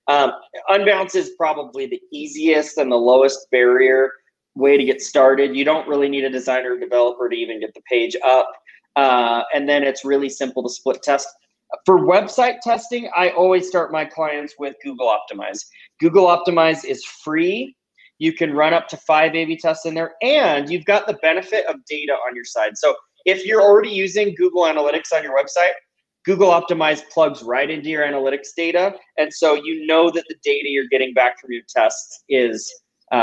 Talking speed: 190 wpm